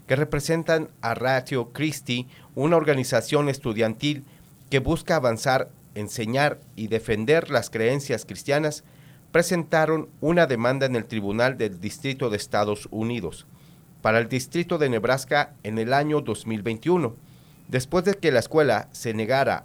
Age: 40-59